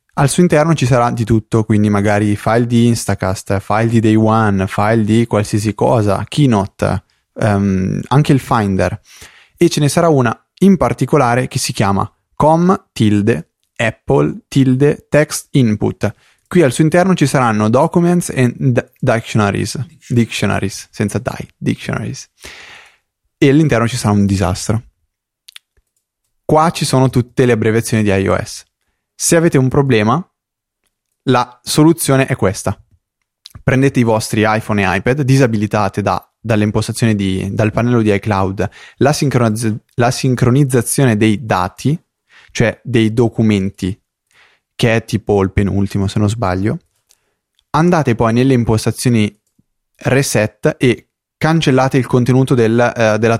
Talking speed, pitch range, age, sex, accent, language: 130 wpm, 105-130 Hz, 20-39, male, native, Italian